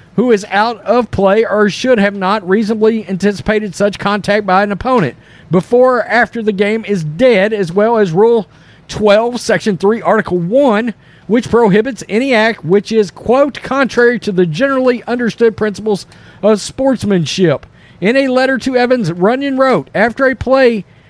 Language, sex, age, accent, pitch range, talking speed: English, male, 40-59, American, 195-235 Hz, 160 wpm